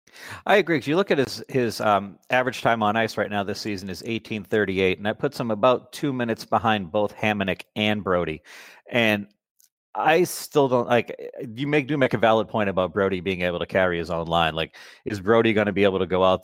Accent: American